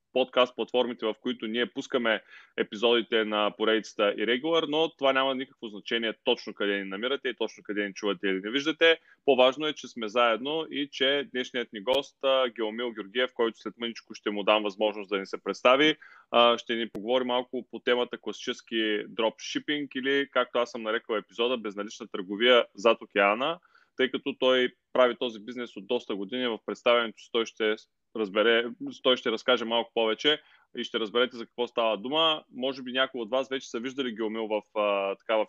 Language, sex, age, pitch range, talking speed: Bulgarian, male, 20-39, 110-130 Hz, 180 wpm